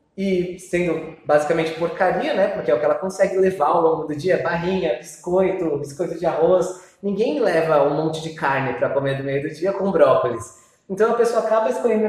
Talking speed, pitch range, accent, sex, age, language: 200 wpm, 150-205 Hz, Brazilian, male, 20-39, Portuguese